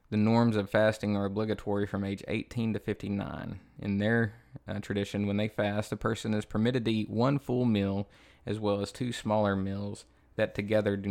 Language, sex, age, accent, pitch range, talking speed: English, male, 20-39, American, 100-110 Hz, 195 wpm